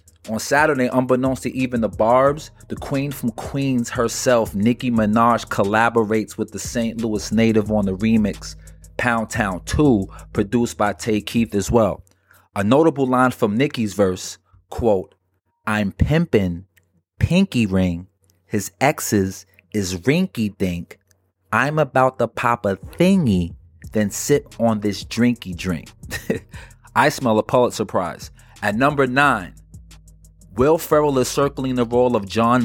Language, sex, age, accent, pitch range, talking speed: English, male, 30-49, American, 100-125 Hz, 140 wpm